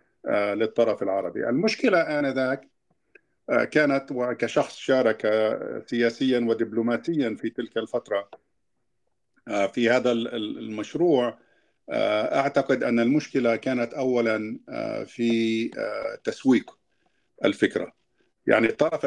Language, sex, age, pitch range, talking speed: Arabic, male, 50-69, 115-150 Hz, 80 wpm